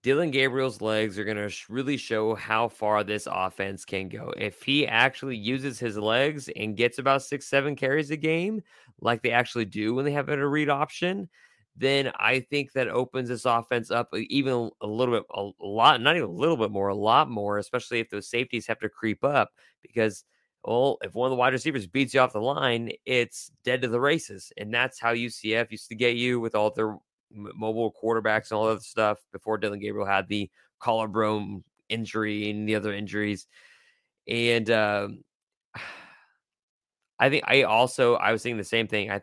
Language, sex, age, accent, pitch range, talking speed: English, male, 30-49, American, 110-135 Hz, 195 wpm